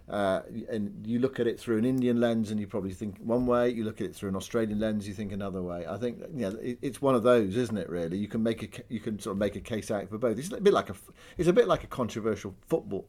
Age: 50-69